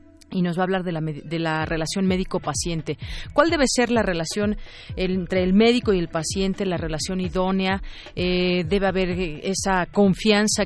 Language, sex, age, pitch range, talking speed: Spanish, female, 40-59, 170-205 Hz, 170 wpm